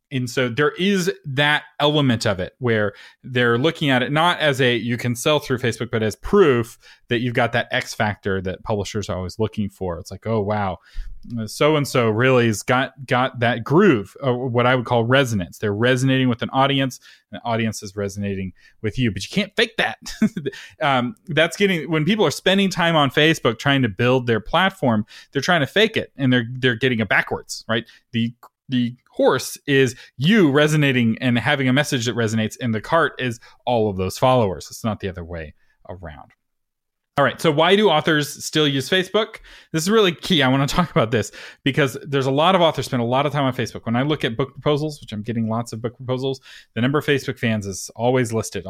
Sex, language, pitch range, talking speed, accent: male, English, 115-150 Hz, 220 wpm, American